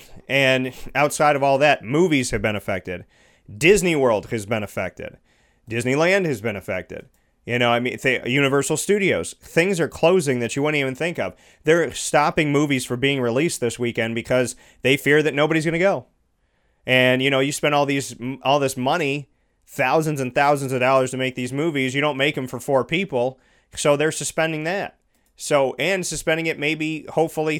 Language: English